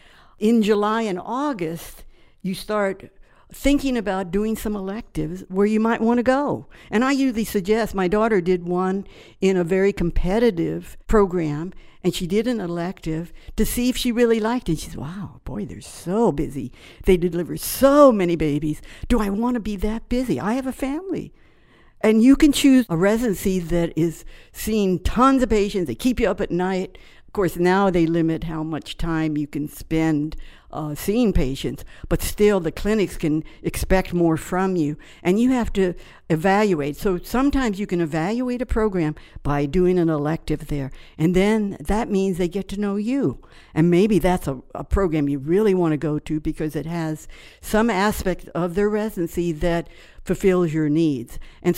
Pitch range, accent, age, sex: 165-215 Hz, American, 60-79, female